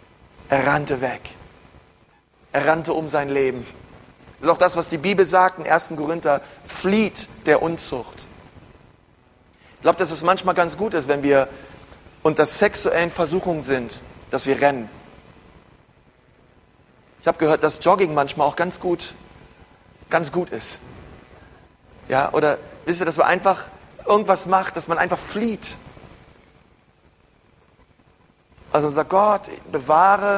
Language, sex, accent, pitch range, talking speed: German, male, German, 145-180 Hz, 130 wpm